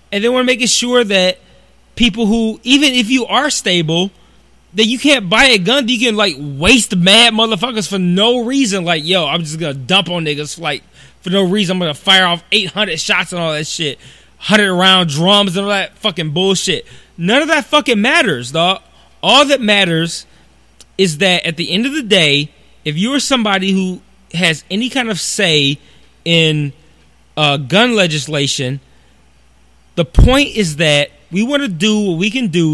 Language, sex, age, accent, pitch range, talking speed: English, male, 20-39, American, 160-225 Hz, 190 wpm